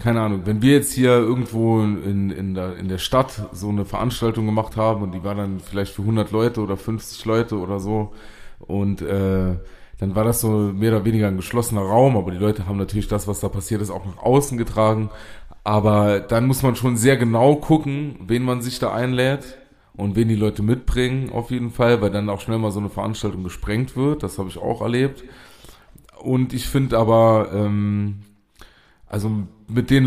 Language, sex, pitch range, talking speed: German, male, 100-125 Hz, 200 wpm